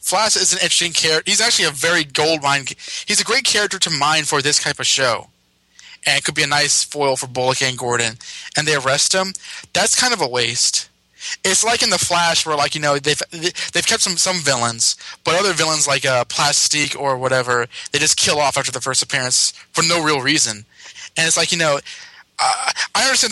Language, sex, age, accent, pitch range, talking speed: English, male, 20-39, American, 135-175 Hz, 220 wpm